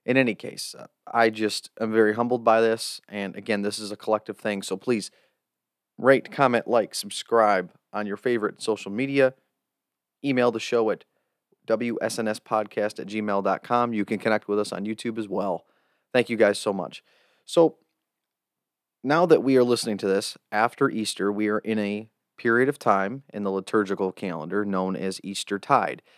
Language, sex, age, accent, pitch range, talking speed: English, male, 30-49, American, 105-125 Hz, 170 wpm